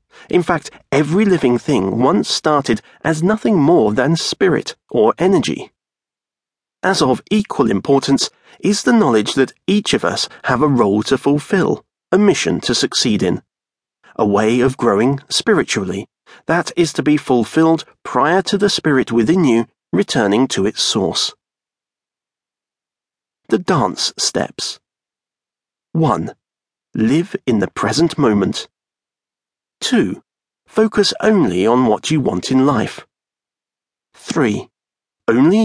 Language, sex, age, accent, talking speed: English, male, 40-59, British, 125 wpm